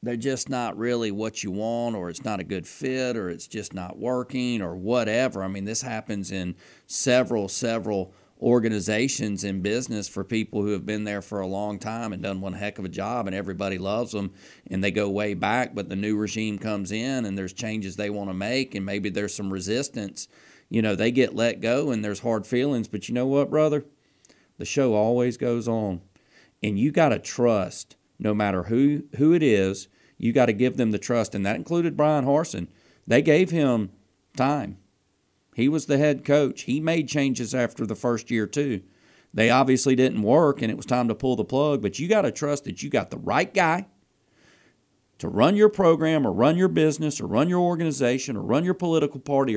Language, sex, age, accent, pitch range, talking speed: English, male, 40-59, American, 105-145 Hz, 210 wpm